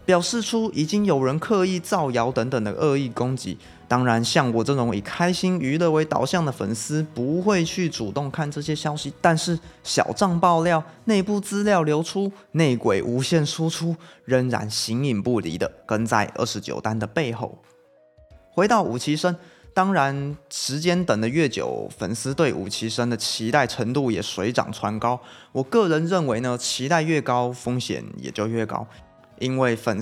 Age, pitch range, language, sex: 20-39, 115-165 Hz, Chinese, male